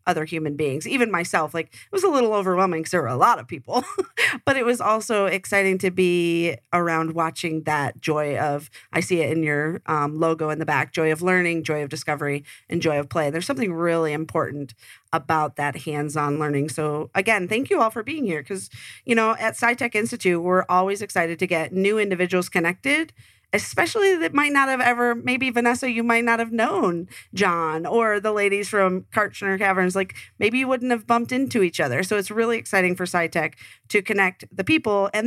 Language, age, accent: English, 40-59, American